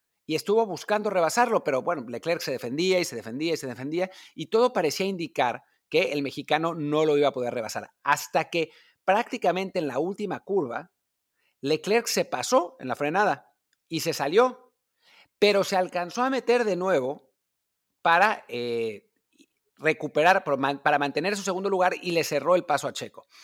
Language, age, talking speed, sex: Spanish, 50-69, 170 wpm, male